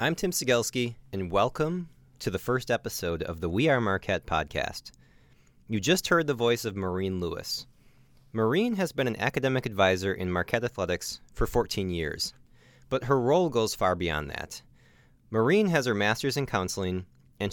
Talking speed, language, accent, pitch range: 170 wpm, English, American, 95-130 Hz